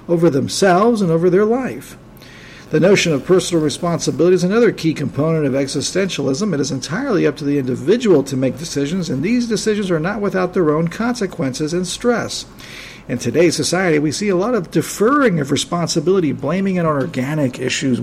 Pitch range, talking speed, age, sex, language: 140-180 Hz, 180 wpm, 50-69, male, English